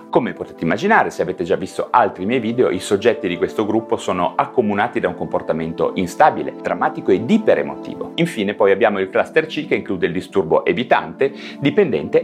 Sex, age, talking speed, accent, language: male, 30-49, 175 wpm, native, Italian